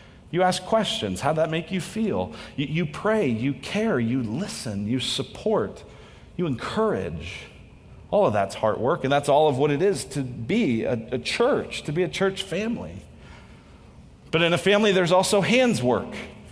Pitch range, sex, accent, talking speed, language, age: 115-170 Hz, male, American, 180 wpm, English, 40-59